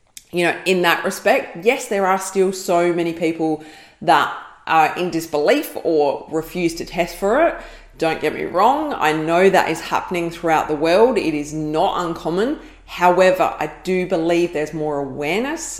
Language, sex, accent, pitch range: English, female, Australian, 155-195 Hz